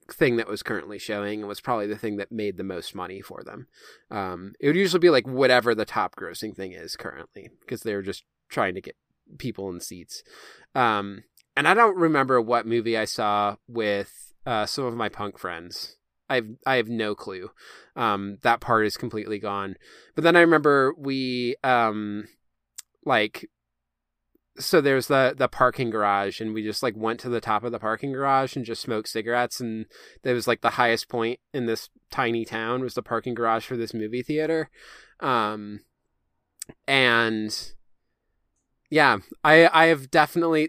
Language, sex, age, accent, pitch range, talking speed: English, male, 20-39, American, 110-135 Hz, 180 wpm